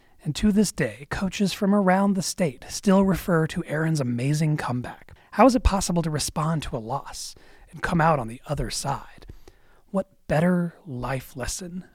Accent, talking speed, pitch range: American, 175 wpm, 130-180 Hz